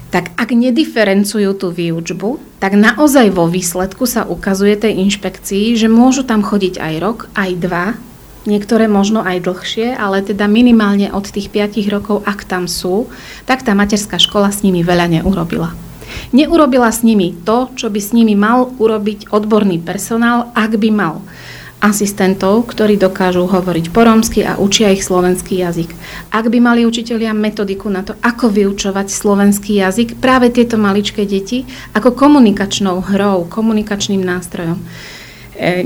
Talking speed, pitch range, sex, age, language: 150 wpm, 185-225 Hz, female, 30-49, Slovak